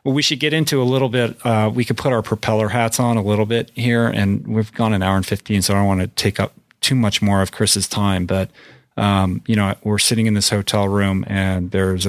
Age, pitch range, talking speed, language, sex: 40-59, 95-110 Hz, 260 wpm, English, male